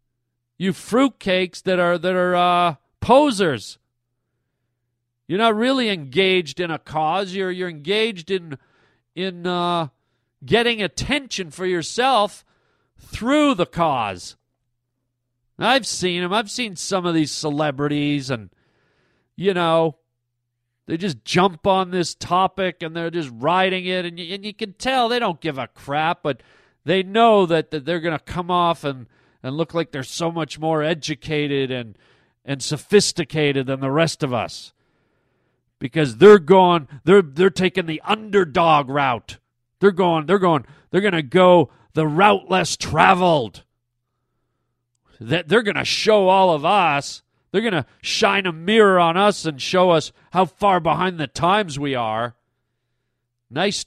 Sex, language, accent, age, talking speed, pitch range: male, English, American, 40-59, 155 wpm, 130-190 Hz